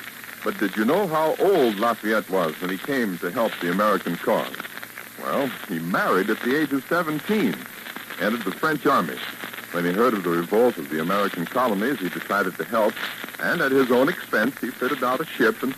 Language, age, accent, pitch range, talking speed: English, 60-79, American, 110-185 Hz, 200 wpm